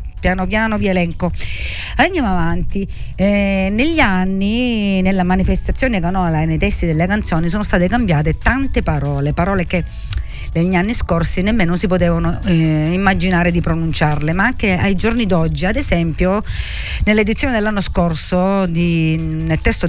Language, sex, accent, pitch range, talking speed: Italian, female, native, 160-200 Hz, 140 wpm